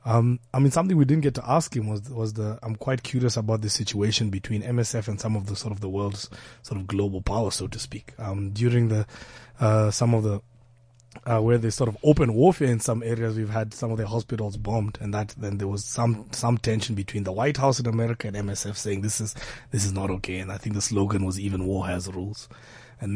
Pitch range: 105-125 Hz